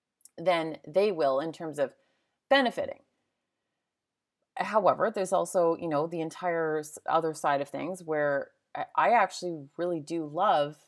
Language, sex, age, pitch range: English, female, 30-49, 165-235 Hz